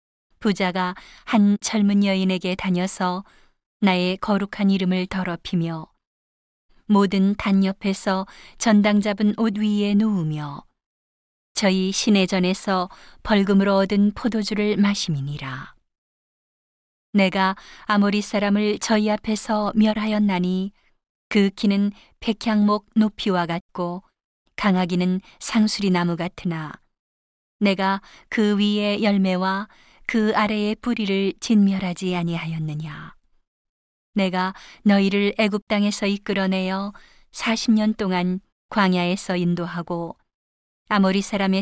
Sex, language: female, Korean